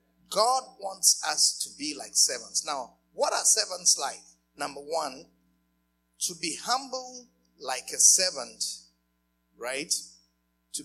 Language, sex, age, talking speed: English, male, 50-69, 120 wpm